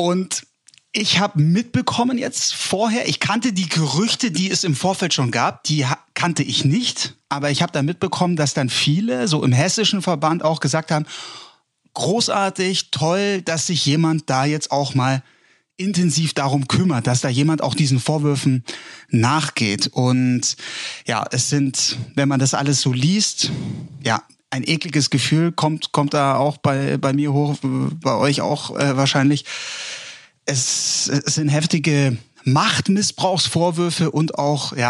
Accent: German